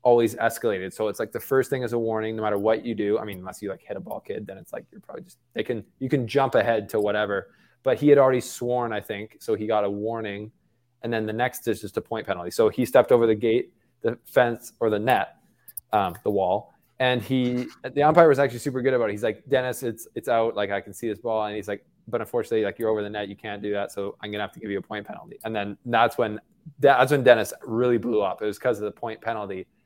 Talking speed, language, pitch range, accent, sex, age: 275 wpm, English, 105-125 Hz, American, male, 20-39